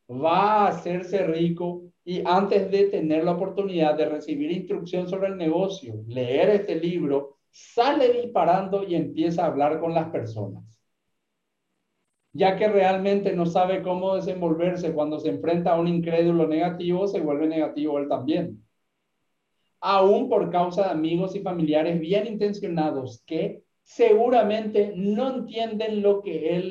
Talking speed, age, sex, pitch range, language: 140 wpm, 50-69, male, 155-190 Hz, Spanish